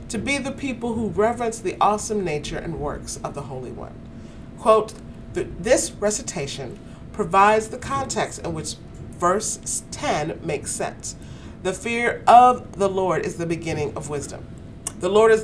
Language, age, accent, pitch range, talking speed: English, 40-59, American, 155-215 Hz, 155 wpm